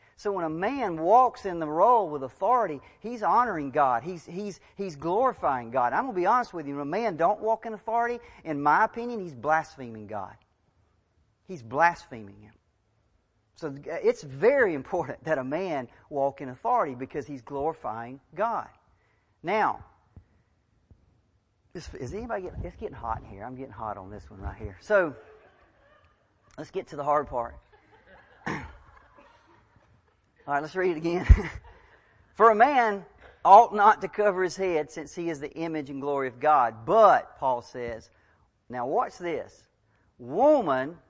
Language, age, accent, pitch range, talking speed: English, 40-59, American, 110-180 Hz, 160 wpm